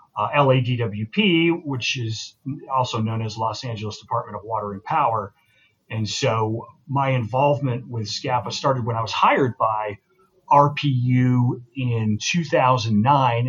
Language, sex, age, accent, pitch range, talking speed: English, male, 40-59, American, 110-130 Hz, 130 wpm